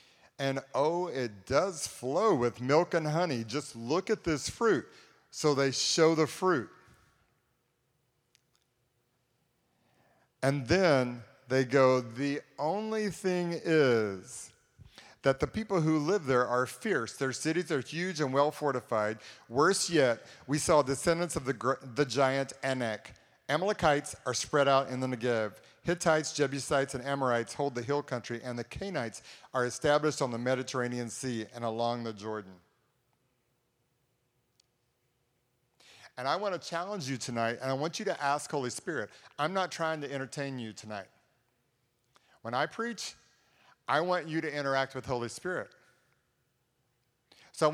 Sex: male